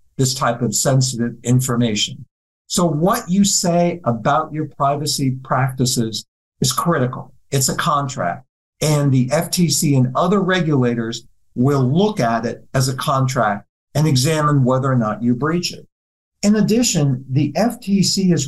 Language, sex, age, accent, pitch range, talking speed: English, male, 50-69, American, 130-180 Hz, 145 wpm